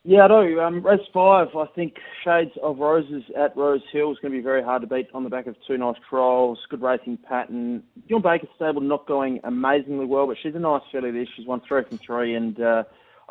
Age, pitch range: 20-39, 130-175 Hz